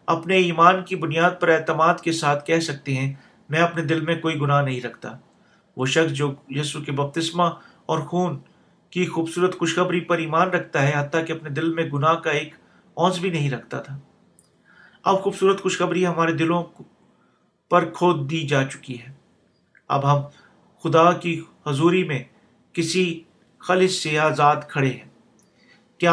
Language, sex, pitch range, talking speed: Urdu, male, 150-180 Hz, 165 wpm